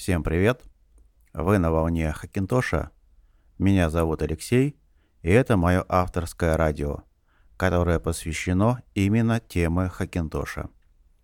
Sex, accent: male, native